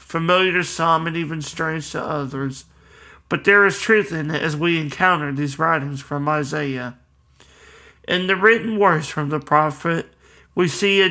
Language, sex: English, male